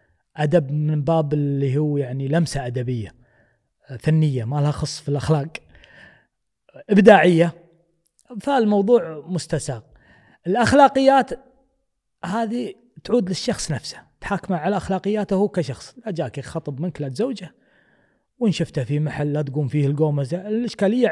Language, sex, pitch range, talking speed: Arabic, male, 150-215 Hz, 120 wpm